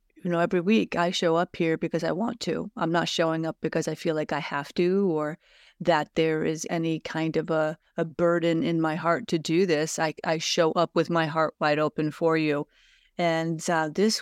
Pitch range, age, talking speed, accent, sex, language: 160-195 Hz, 30-49, 225 wpm, American, female, English